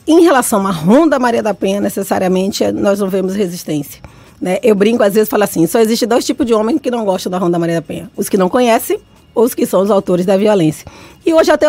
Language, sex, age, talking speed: Portuguese, female, 20-39, 240 wpm